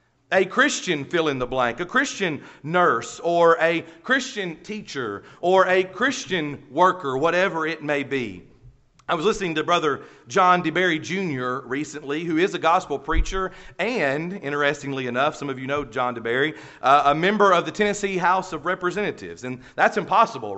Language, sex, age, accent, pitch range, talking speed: English, male, 40-59, American, 145-205 Hz, 155 wpm